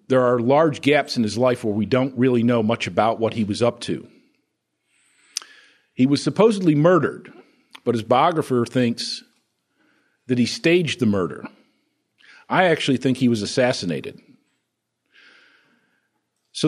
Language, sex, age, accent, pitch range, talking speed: English, male, 50-69, American, 115-150 Hz, 140 wpm